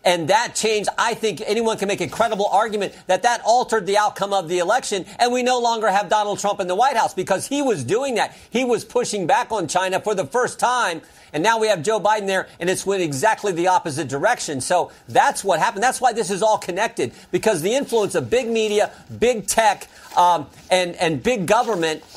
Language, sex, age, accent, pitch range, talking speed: English, male, 50-69, American, 195-225 Hz, 220 wpm